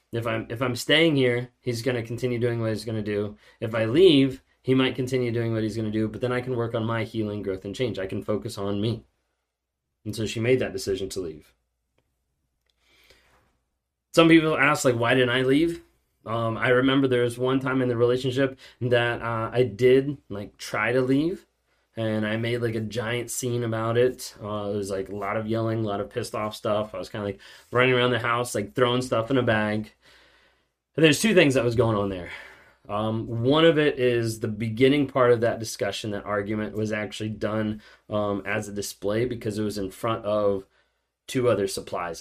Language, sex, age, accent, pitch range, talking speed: English, male, 20-39, American, 100-120 Hz, 220 wpm